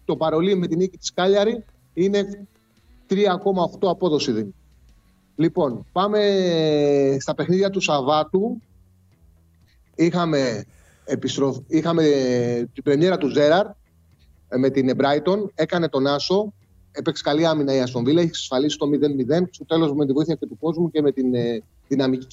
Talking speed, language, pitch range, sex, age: 135 wpm, Greek, 135-180 Hz, male, 30-49